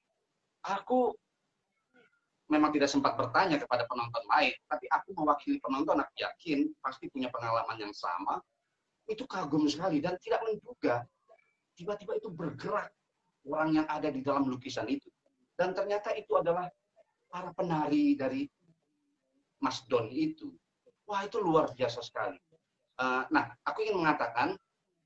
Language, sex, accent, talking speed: Indonesian, male, native, 130 wpm